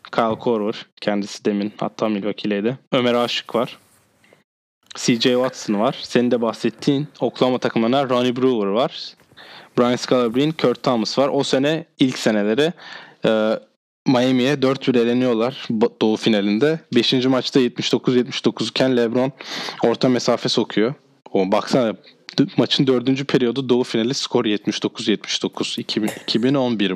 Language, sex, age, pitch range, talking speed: Turkish, male, 20-39, 115-135 Hz, 115 wpm